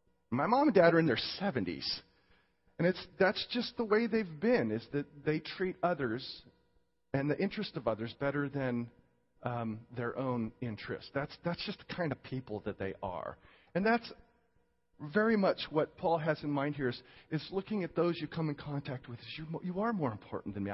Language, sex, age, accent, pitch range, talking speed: English, male, 40-59, American, 110-160 Hz, 205 wpm